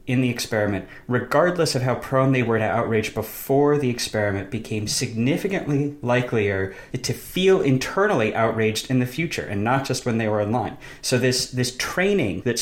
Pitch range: 105-130 Hz